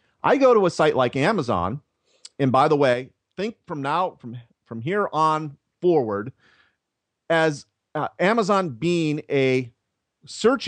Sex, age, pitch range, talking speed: male, 40-59, 125-170 Hz, 140 wpm